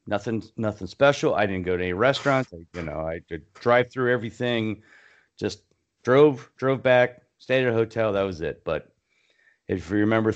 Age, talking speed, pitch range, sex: 40-59, 180 wpm, 100-125 Hz, male